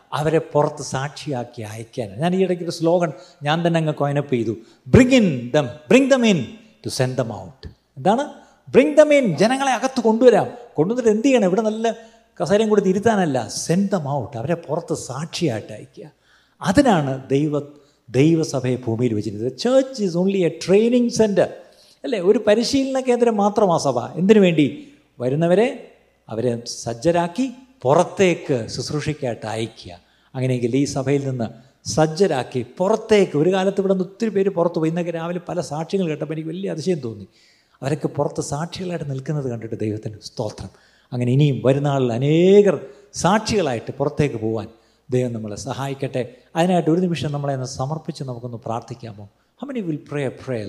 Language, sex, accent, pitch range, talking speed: Malayalam, male, native, 125-190 Hz, 130 wpm